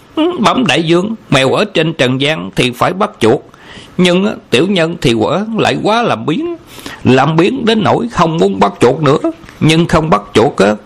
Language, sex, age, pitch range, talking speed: Vietnamese, male, 60-79, 130-195 Hz, 195 wpm